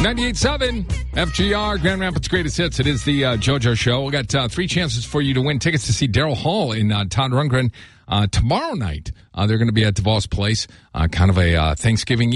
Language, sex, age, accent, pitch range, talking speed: English, male, 50-69, American, 110-145 Hz, 230 wpm